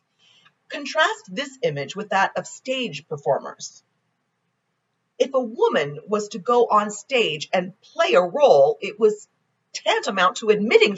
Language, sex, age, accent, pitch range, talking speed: English, female, 40-59, American, 160-245 Hz, 135 wpm